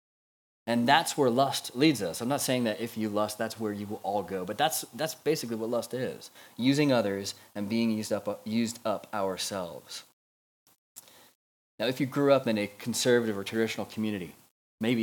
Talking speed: 190 wpm